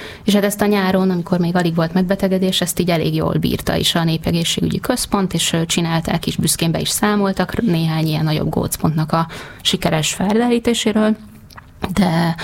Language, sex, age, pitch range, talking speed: Hungarian, female, 20-39, 155-185 Hz, 165 wpm